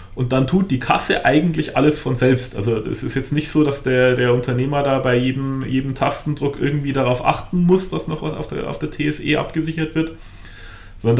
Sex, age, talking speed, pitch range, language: male, 30-49, 210 wpm, 115-140 Hz, German